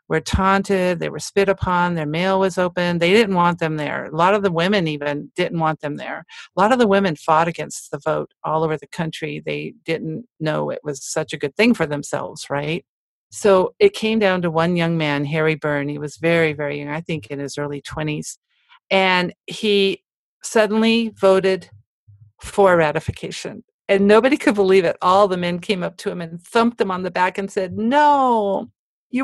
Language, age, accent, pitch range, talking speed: English, 50-69, American, 160-225 Hz, 205 wpm